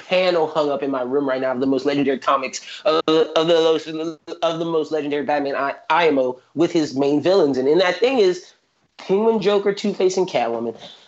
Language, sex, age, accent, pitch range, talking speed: English, male, 30-49, American, 150-205 Hz, 210 wpm